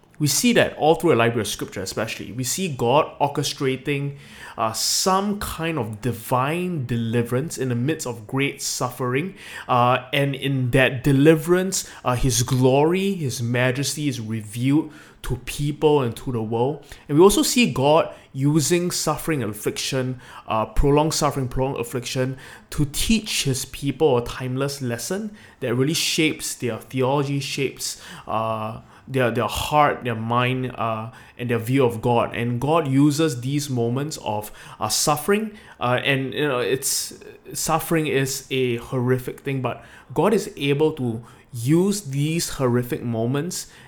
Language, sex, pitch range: English, male, 120-145 Hz